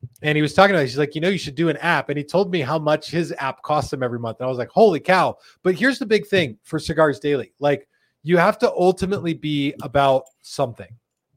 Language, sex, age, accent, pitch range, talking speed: English, male, 30-49, American, 130-165 Hz, 260 wpm